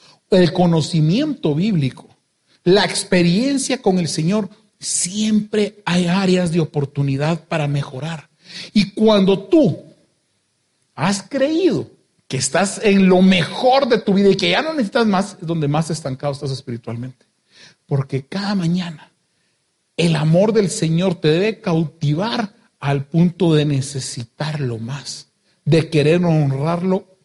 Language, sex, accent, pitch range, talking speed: Spanish, male, Mexican, 155-210 Hz, 130 wpm